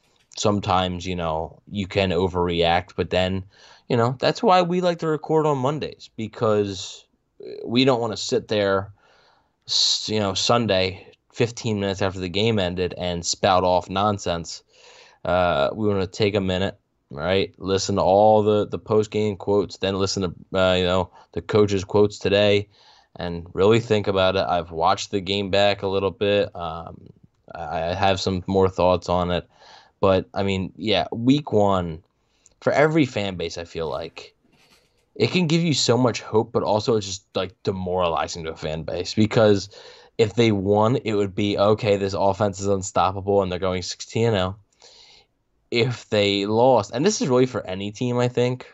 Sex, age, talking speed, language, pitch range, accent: male, 10-29, 175 wpm, English, 90-110 Hz, American